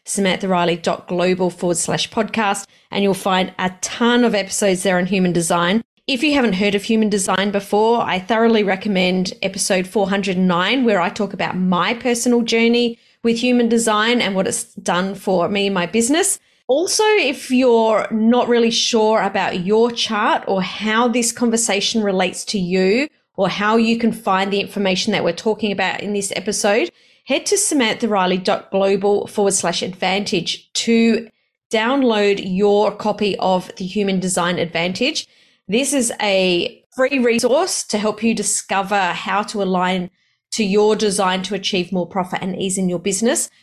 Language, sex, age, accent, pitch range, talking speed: English, female, 30-49, Australian, 190-235 Hz, 155 wpm